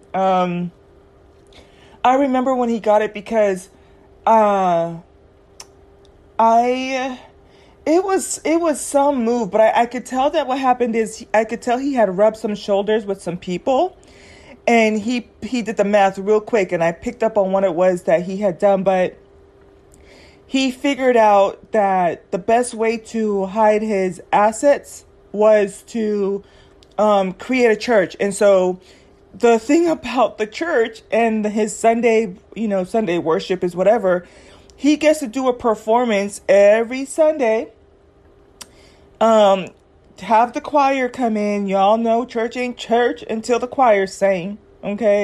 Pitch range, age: 195-245 Hz, 30-49